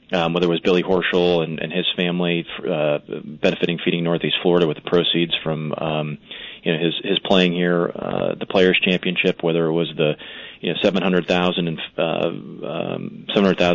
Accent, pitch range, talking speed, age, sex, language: American, 80-90 Hz, 155 wpm, 30-49, male, English